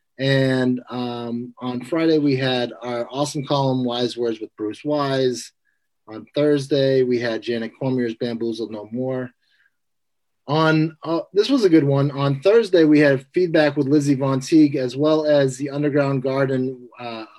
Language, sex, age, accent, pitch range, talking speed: English, male, 30-49, American, 125-155 Hz, 160 wpm